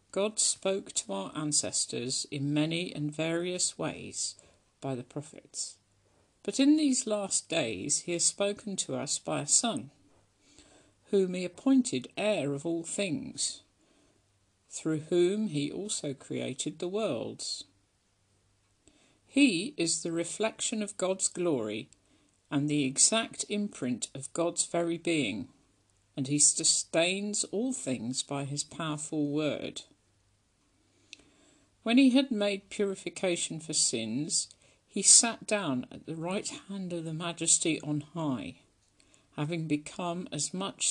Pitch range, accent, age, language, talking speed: 135-195 Hz, British, 50-69, English, 130 wpm